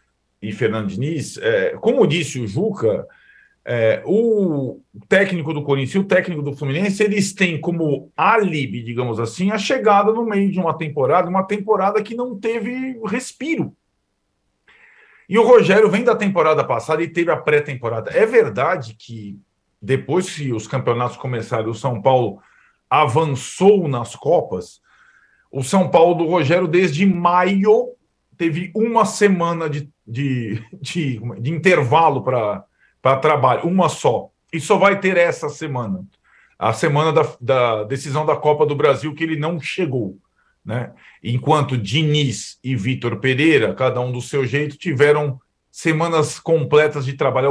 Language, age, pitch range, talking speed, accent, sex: Portuguese, 40-59, 135-190 Hz, 140 wpm, Brazilian, male